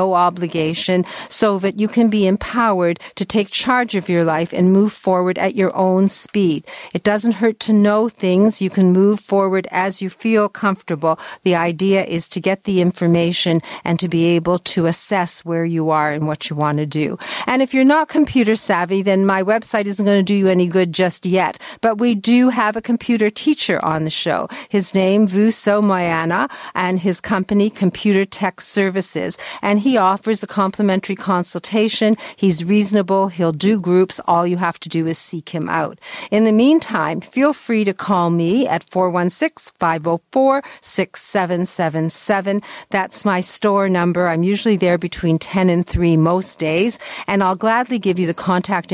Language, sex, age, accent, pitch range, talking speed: English, female, 50-69, American, 175-215 Hz, 180 wpm